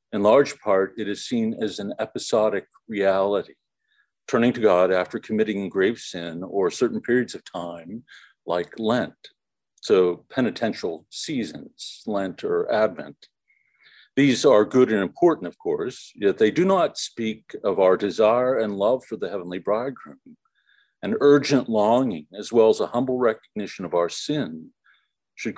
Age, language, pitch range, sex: 50-69, English, 100-140 Hz, male